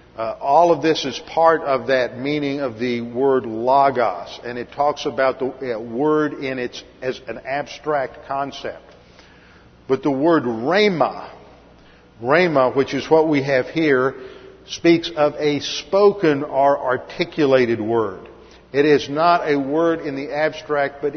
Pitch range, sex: 130-155 Hz, male